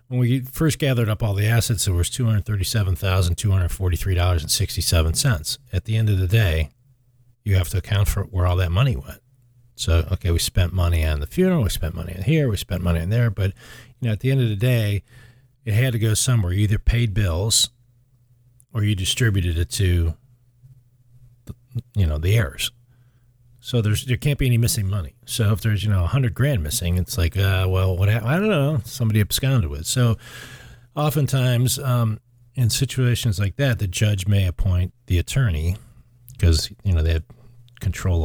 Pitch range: 90-120 Hz